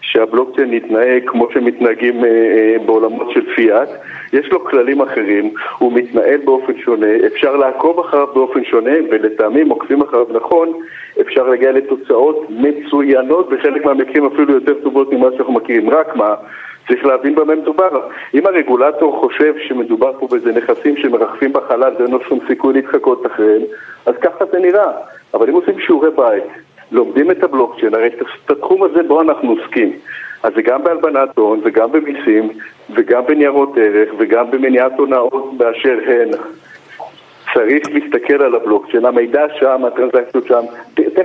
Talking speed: 145 wpm